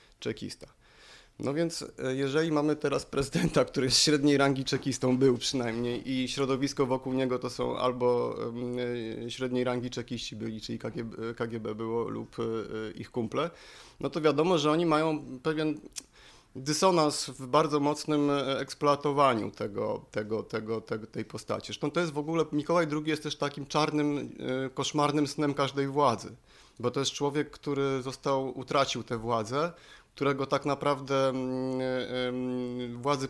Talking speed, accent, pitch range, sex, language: 130 wpm, native, 120-145 Hz, male, Polish